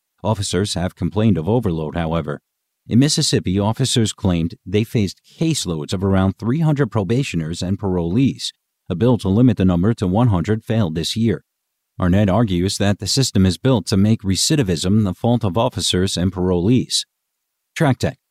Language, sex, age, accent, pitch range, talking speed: English, male, 50-69, American, 90-120 Hz, 155 wpm